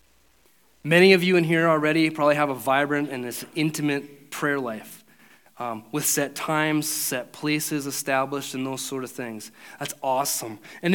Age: 30-49